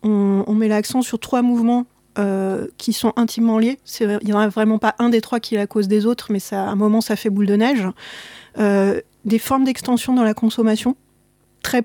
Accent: French